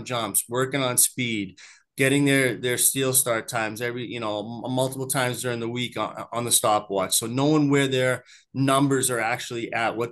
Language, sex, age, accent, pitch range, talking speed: English, male, 30-49, American, 110-130 Hz, 185 wpm